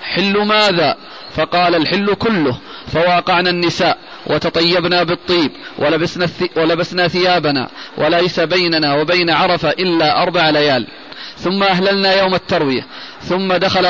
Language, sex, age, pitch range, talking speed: Arabic, male, 30-49, 175-190 Hz, 105 wpm